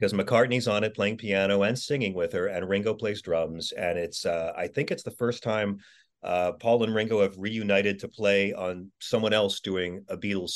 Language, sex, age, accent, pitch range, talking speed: English, male, 40-59, American, 95-115 Hz, 210 wpm